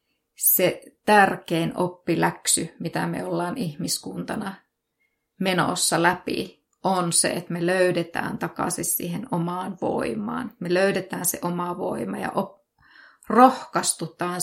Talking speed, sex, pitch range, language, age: 110 wpm, female, 180-220 Hz, Finnish, 30-49